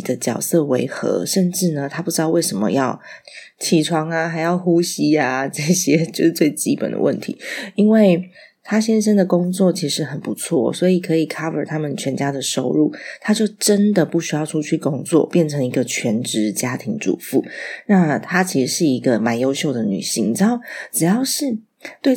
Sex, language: female, Chinese